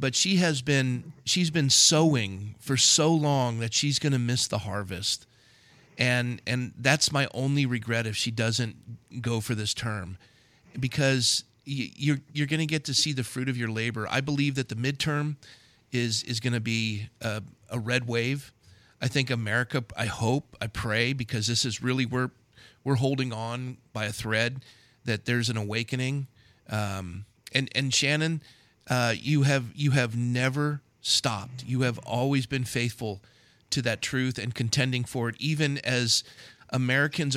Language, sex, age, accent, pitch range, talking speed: English, male, 40-59, American, 115-135 Hz, 165 wpm